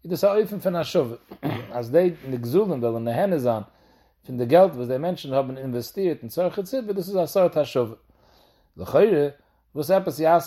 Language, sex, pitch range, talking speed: English, male, 125-175 Hz, 195 wpm